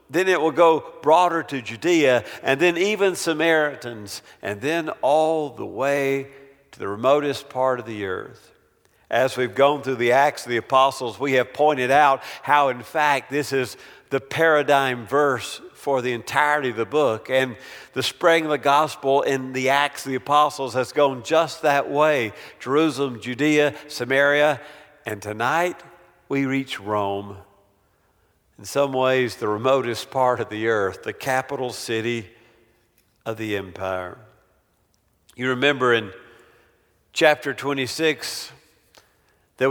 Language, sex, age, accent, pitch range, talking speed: English, male, 50-69, American, 120-150 Hz, 145 wpm